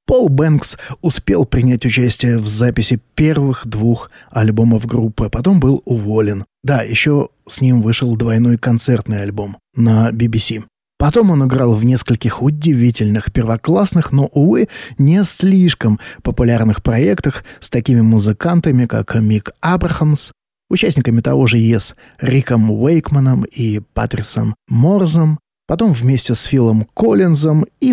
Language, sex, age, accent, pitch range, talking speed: Russian, male, 20-39, native, 115-145 Hz, 125 wpm